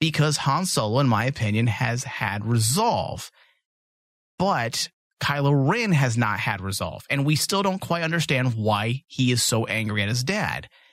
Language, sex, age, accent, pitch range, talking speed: English, male, 30-49, American, 120-155 Hz, 165 wpm